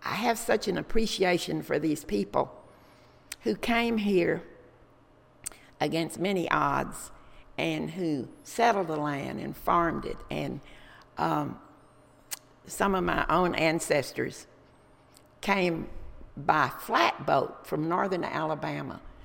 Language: English